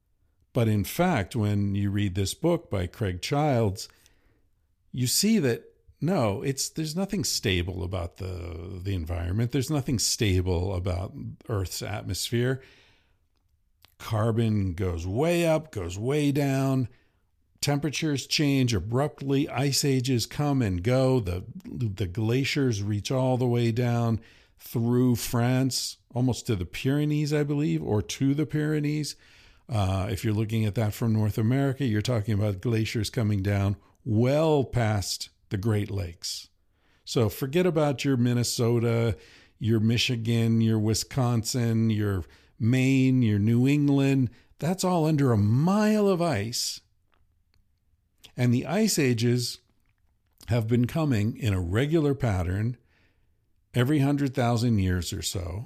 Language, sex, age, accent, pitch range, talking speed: English, male, 50-69, American, 95-130 Hz, 130 wpm